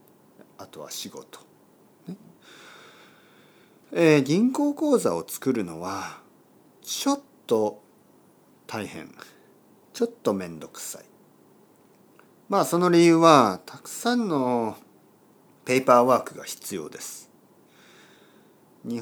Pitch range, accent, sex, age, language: 110-165 Hz, native, male, 50-69, Japanese